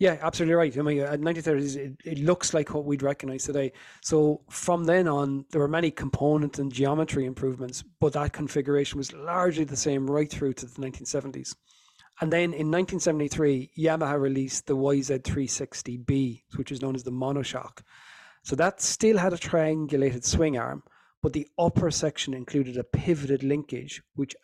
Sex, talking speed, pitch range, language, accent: male, 170 wpm, 130-155 Hz, English, Irish